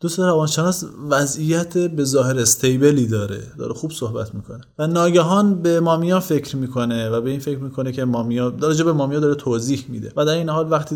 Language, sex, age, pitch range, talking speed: Persian, male, 30-49, 120-150 Hz, 190 wpm